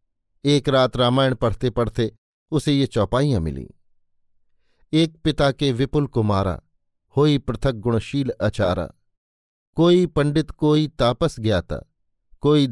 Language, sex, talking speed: Hindi, male, 115 wpm